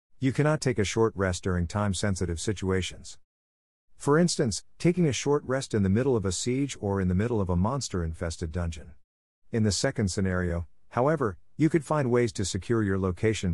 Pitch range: 85-120 Hz